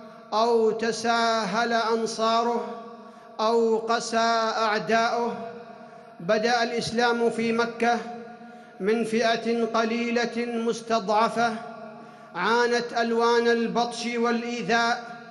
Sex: male